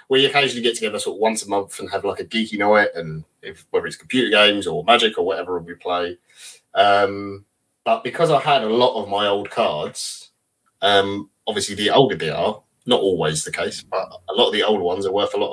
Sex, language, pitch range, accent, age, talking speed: male, English, 100-150 Hz, British, 30-49, 230 wpm